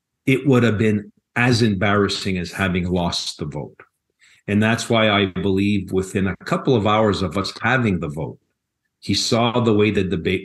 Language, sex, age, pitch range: English, male, 50-69, 95-115 Hz